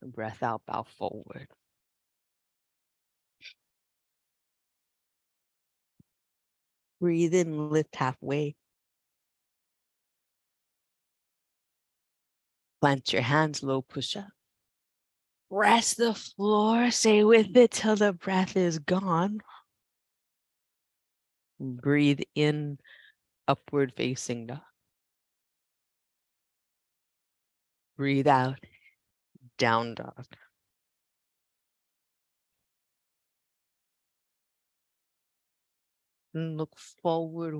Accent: American